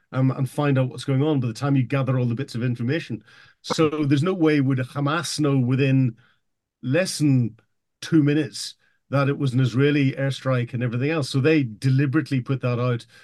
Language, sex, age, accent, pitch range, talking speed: English, male, 50-69, British, 120-145 Hz, 195 wpm